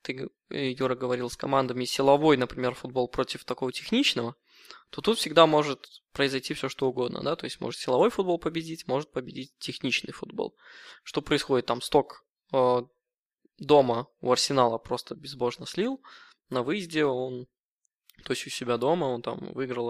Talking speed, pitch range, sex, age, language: 155 wpm, 125-160 Hz, male, 20-39, Russian